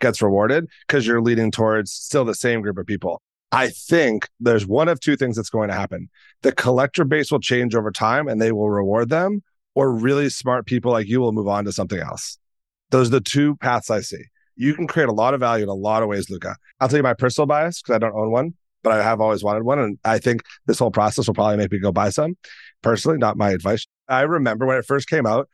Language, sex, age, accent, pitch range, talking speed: English, male, 30-49, American, 110-145 Hz, 255 wpm